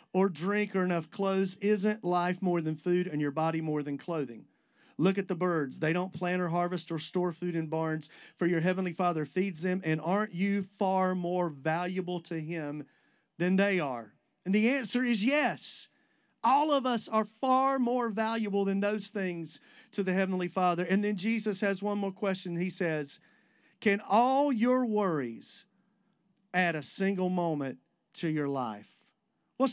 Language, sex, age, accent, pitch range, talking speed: English, male, 40-59, American, 175-215 Hz, 175 wpm